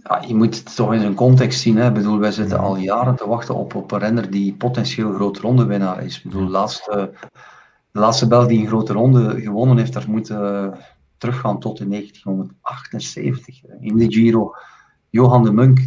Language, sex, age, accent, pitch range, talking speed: Dutch, male, 50-69, Dutch, 100-125 Hz, 195 wpm